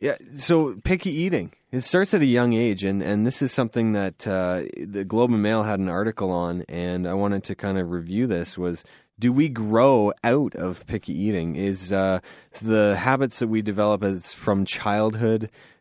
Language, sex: English, male